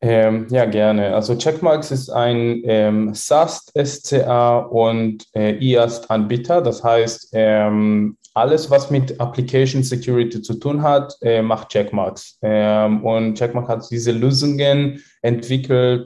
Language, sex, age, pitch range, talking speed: German, male, 20-39, 110-135 Hz, 125 wpm